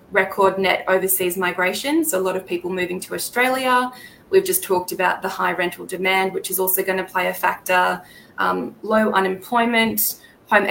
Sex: female